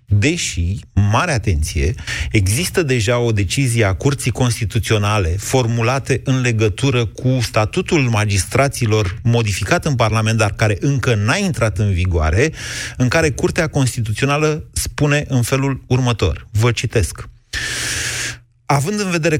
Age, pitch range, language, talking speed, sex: 30-49, 105-140 Hz, Romanian, 120 wpm, male